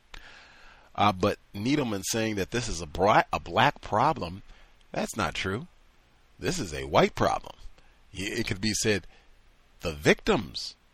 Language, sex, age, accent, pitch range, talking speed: English, male, 40-59, American, 80-115 Hz, 135 wpm